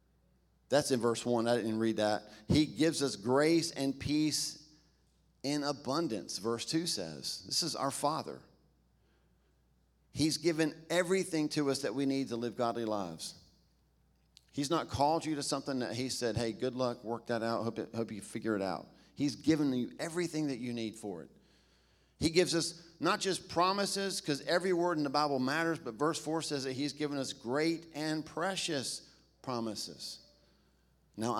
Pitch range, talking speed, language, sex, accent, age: 115-155 Hz, 175 wpm, English, male, American, 50-69